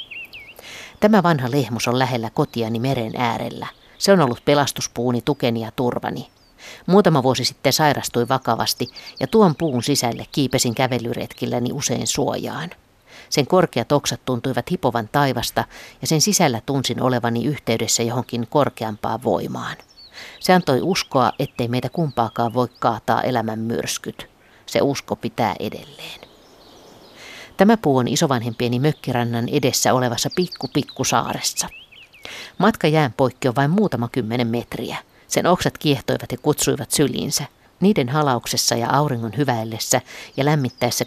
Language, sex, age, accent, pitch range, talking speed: Finnish, female, 50-69, native, 120-145 Hz, 125 wpm